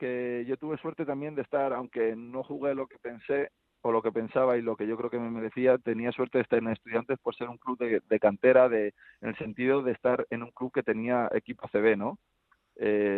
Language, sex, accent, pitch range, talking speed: Spanish, male, Spanish, 110-130 Hz, 240 wpm